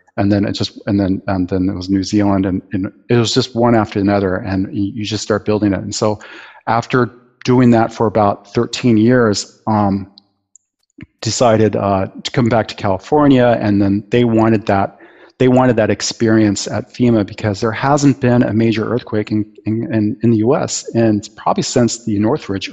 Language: English